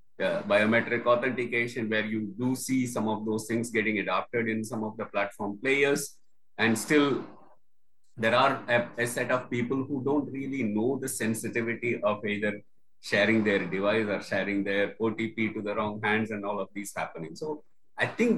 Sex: male